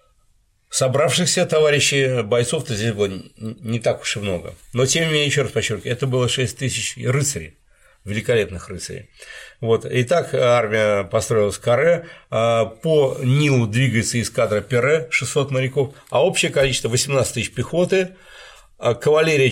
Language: Russian